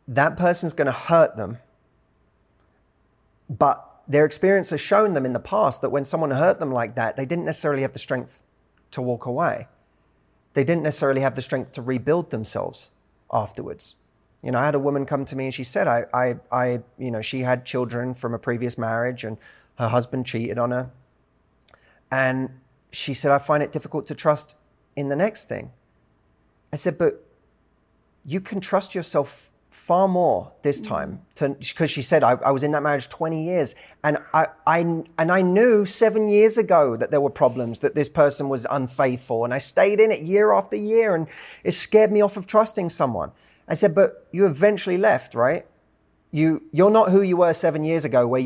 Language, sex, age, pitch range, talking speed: English, male, 30-49, 130-175 Hz, 195 wpm